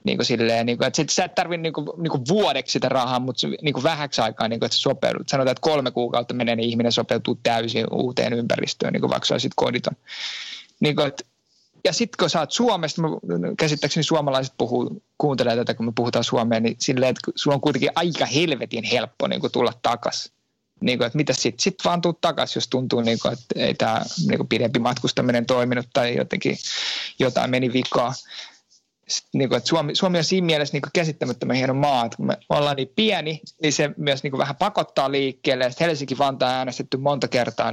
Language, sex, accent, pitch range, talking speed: Finnish, male, native, 120-155 Hz, 195 wpm